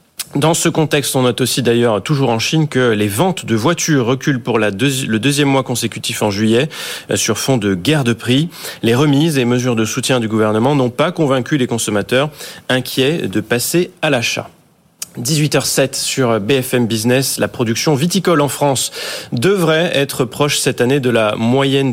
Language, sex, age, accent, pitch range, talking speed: French, male, 30-49, French, 115-155 Hz, 180 wpm